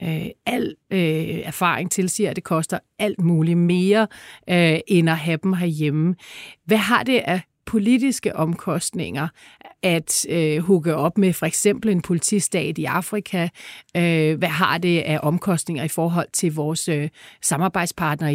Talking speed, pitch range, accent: 140 wpm, 165-200 Hz, native